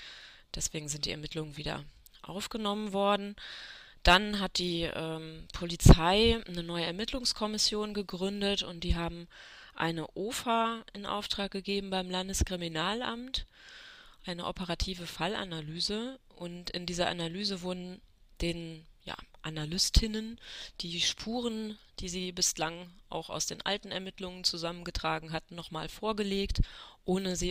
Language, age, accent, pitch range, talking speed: German, 20-39, German, 155-200 Hz, 115 wpm